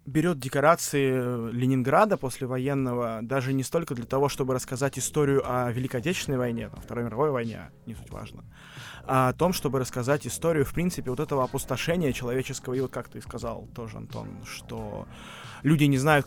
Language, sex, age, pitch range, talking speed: Russian, male, 20-39, 125-145 Hz, 170 wpm